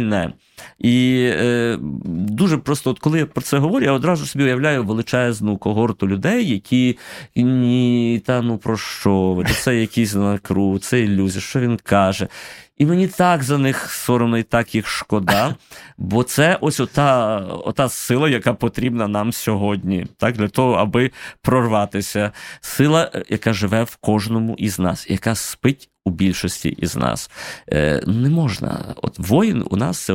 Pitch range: 95-125 Hz